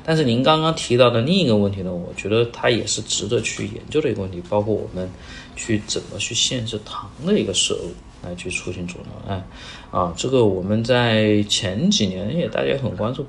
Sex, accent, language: male, native, Chinese